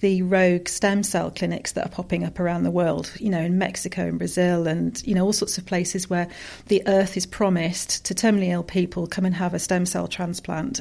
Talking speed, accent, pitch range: 230 wpm, British, 175-200 Hz